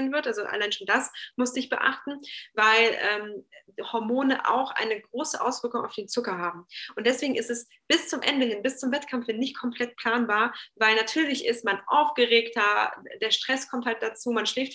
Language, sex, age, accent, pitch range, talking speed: German, female, 20-39, German, 210-245 Hz, 185 wpm